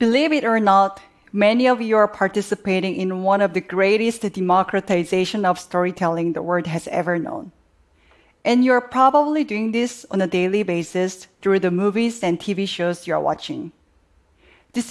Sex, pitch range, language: female, 185-220 Hz, Japanese